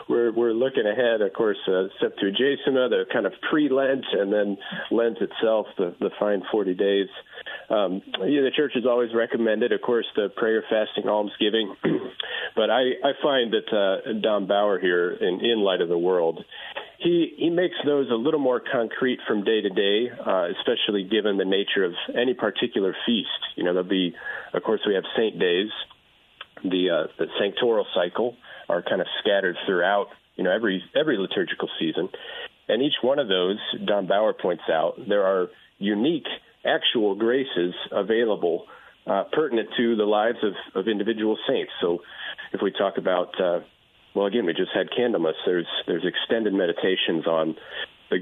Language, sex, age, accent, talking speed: English, male, 40-59, American, 175 wpm